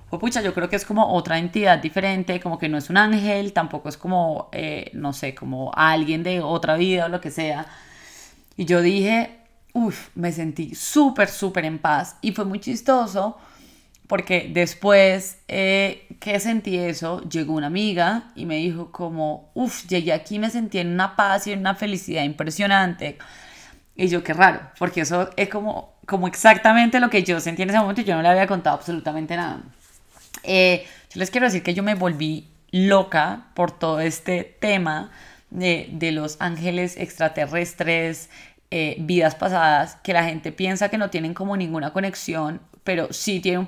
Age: 20-39